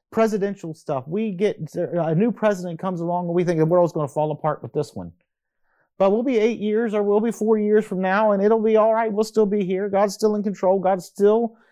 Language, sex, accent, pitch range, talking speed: English, male, American, 150-200 Hz, 245 wpm